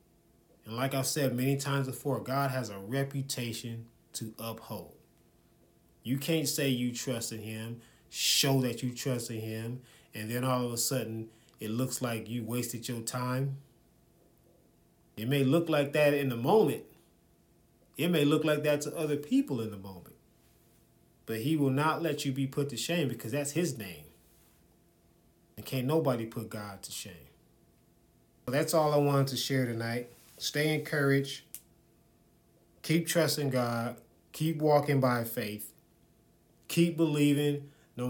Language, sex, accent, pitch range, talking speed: English, male, American, 115-145 Hz, 155 wpm